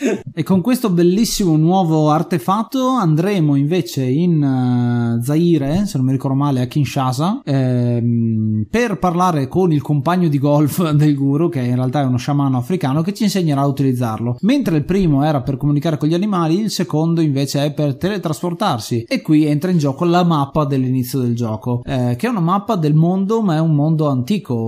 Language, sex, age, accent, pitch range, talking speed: Italian, male, 20-39, native, 130-170 Hz, 185 wpm